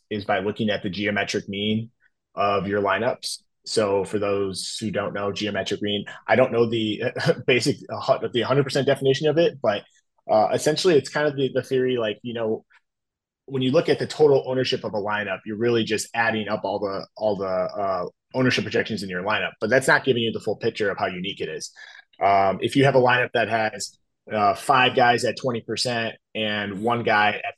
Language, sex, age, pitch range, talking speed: English, male, 20-39, 105-130 Hz, 210 wpm